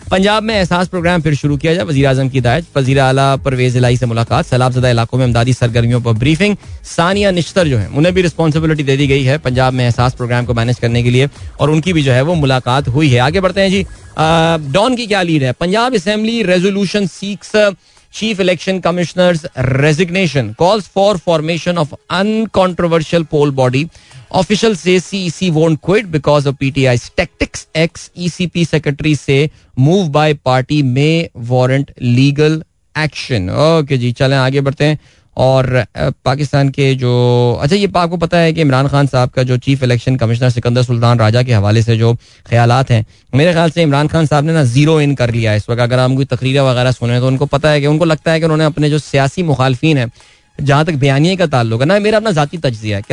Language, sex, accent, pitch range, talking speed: Hindi, male, native, 125-165 Hz, 200 wpm